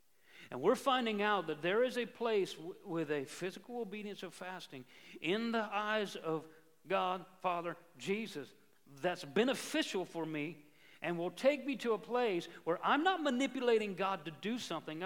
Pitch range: 165-210 Hz